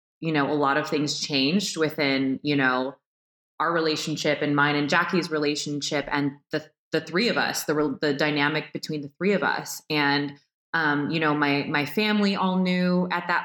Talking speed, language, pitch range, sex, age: 190 wpm, English, 155-190 Hz, female, 20-39